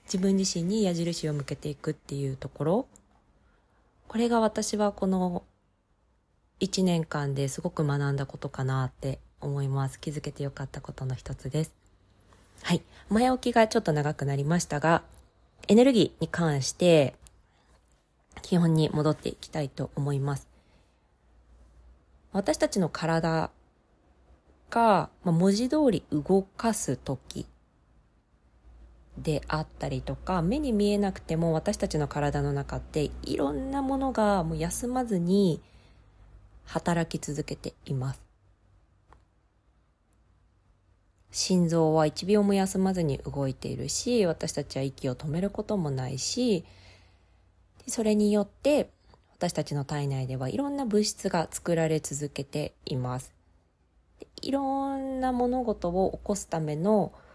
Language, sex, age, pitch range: Japanese, female, 20-39, 130-195 Hz